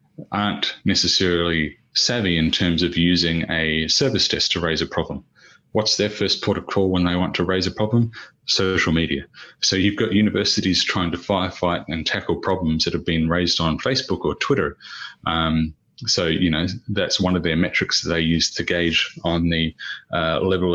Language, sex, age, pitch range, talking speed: English, male, 30-49, 80-95 Hz, 190 wpm